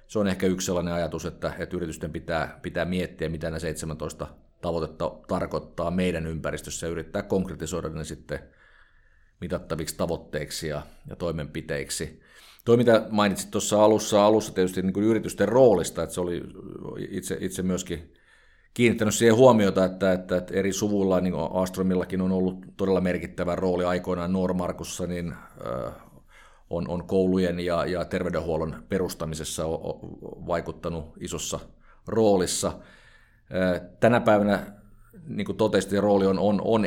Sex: male